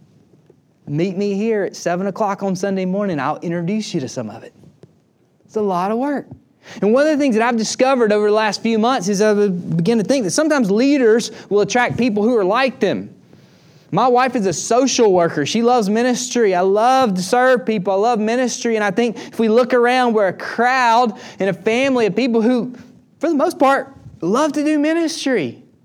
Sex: male